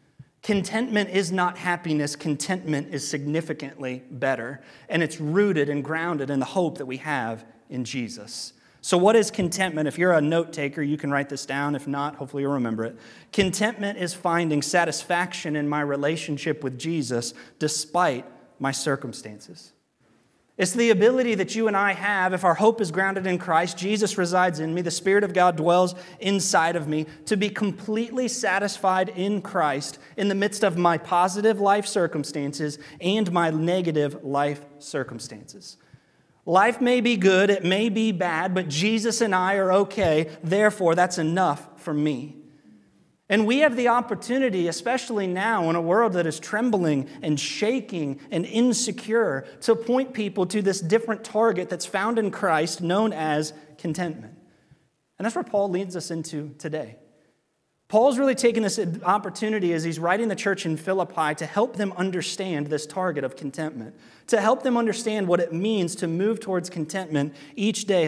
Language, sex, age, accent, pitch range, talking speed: English, male, 30-49, American, 150-205 Hz, 165 wpm